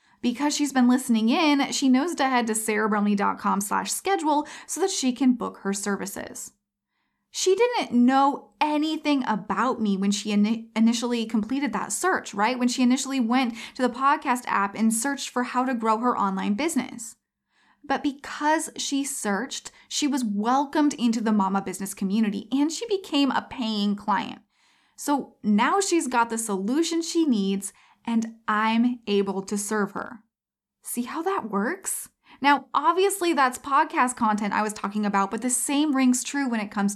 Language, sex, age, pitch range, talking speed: English, female, 20-39, 215-280 Hz, 165 wpm